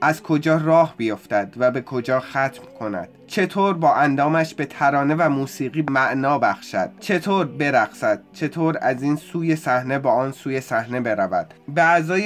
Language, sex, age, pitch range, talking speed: Persian, male, 20-39, 135-185 Hz, 155 wpm